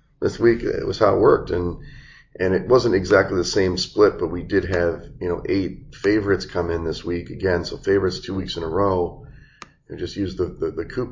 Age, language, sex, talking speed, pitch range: 30-49, English, male, 230 wpm, 85-100 Hz